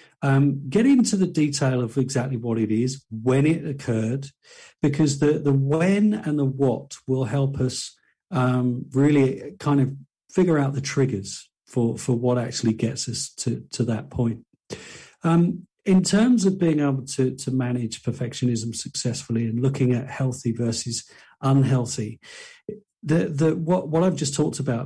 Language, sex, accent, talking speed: English, male, British, 160 wpm